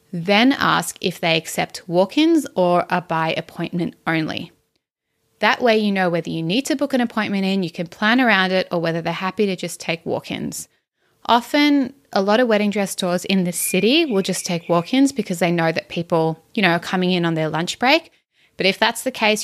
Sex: female